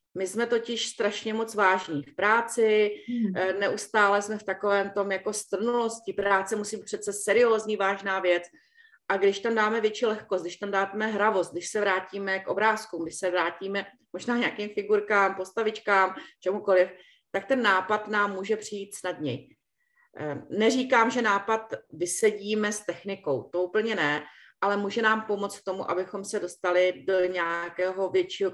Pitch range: 180-215 Hz